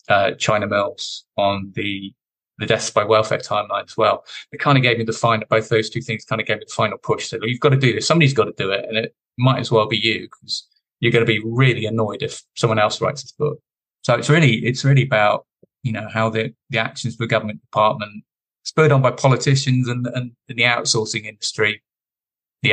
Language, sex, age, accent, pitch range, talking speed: English, male, 20-39, British, 110-130 Hz, 235 wpm